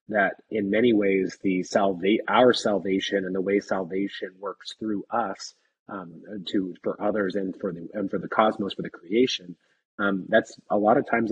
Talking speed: 185 wpm